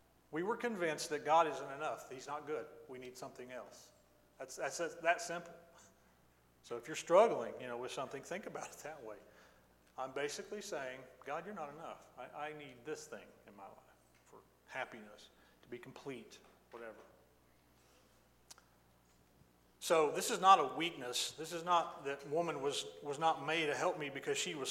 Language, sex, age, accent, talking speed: English, male, 40-59, American, 170 wpm